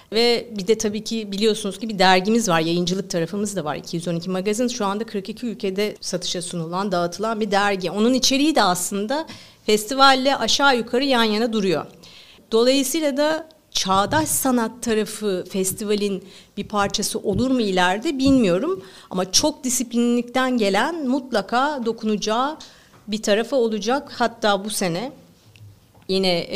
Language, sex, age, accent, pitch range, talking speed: Turkish, female, 50-69, native, 190-245 Hz, 135 wpm